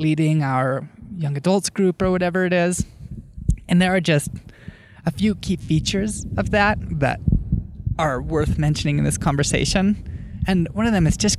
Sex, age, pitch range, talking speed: male, 20-39, 140-185 Hz, 170 wpm